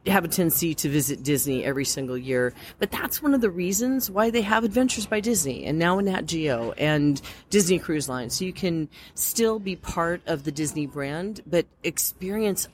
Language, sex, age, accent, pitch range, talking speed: English, female, 30-49, American, 135-170 Hz, 200 wpm